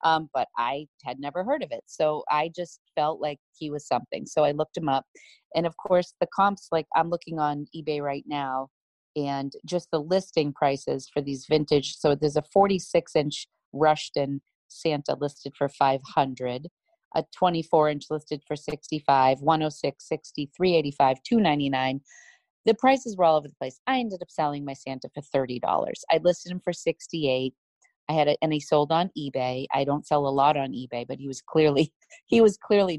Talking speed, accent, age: 185 wpm, American, 30-49